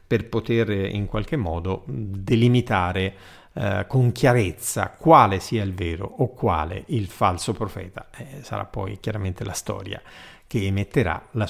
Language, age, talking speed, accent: Italian, 50-69, 140 wpm, native